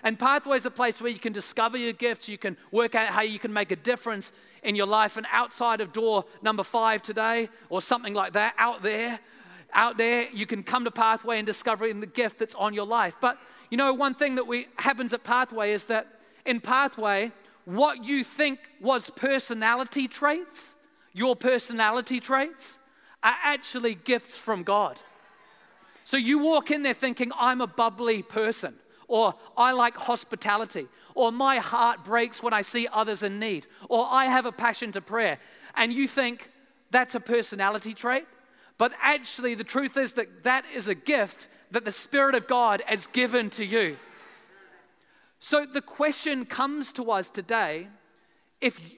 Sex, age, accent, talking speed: male, 30-49, Australian, 175 wpm